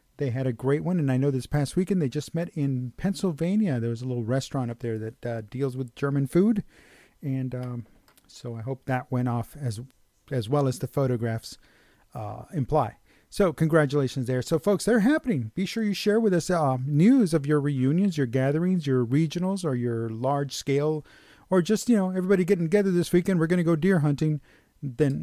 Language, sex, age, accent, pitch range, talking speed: English, male, 40-59, American, 125-170 Hz, 205 wpm